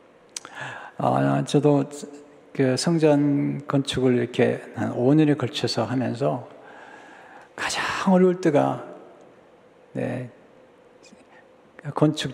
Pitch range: 125-170 Hz